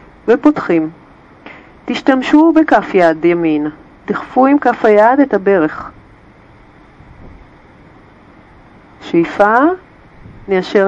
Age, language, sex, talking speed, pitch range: 40-59, Hebrew, female, 70 wpm, 190-245 Hz